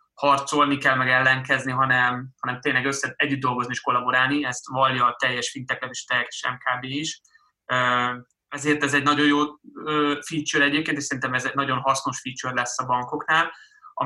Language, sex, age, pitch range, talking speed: Hungarian, male, 20-39, 130-145 Hz, 165 wpm